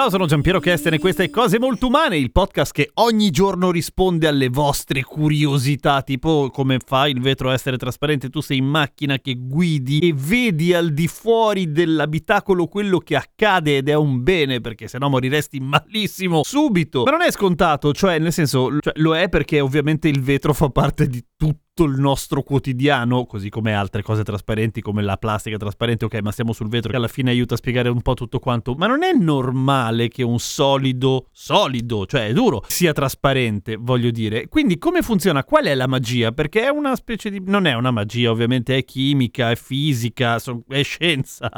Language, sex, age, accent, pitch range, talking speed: Italian, male, 30-49, native, 125-185 Hz, 195 wpm